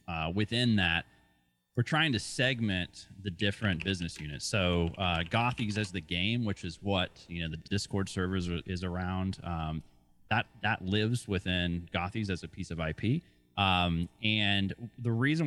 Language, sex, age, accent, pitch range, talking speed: English, male, 30-49, American, 85-105 Hz, 165 wpm